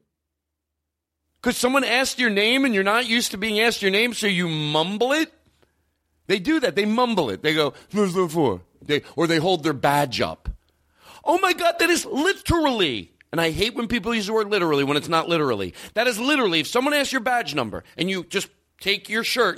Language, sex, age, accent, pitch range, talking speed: English, male, 40-59, American, 145-240 Hz, 200 wpm